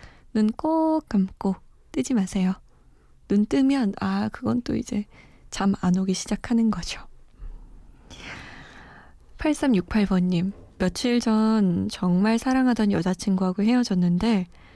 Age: 20-39